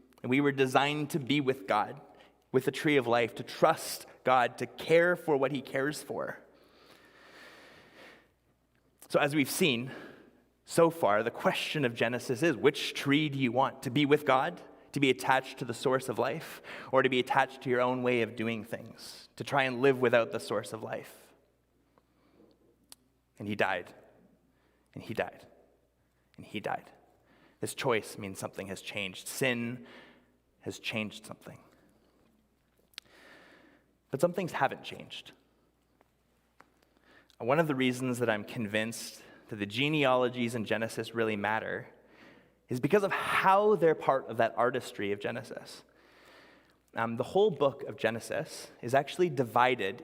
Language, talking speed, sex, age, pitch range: English, 155 wpm, male, 30-49, 115-140 Hz